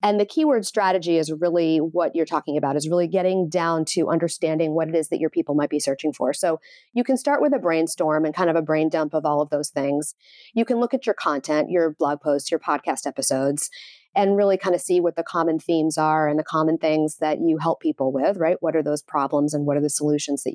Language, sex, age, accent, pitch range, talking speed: English, female, 40-59, American, 150-180 Hz, 250 wpm